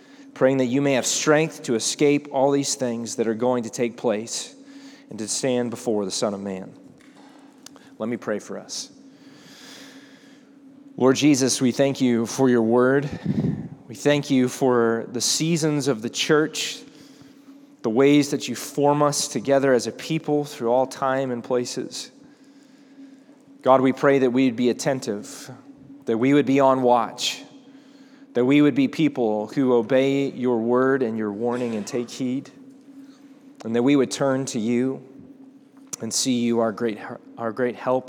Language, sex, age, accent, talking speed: English, male, 20-39, American, 165 wpm